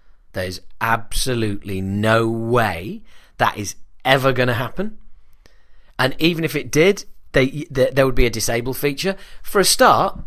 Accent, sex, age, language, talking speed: British, male, 30-49, English, 150 wpm